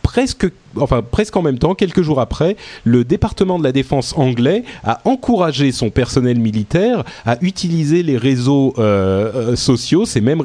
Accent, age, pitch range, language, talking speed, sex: French, 30-49, 110-140 Hz, French, 155 wpm, male